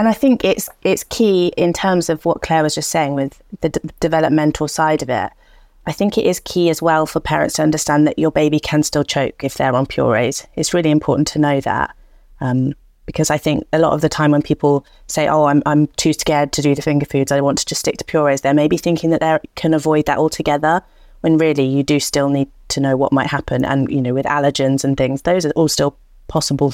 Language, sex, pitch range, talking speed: English, female, 145-160 Hz, 245 wpm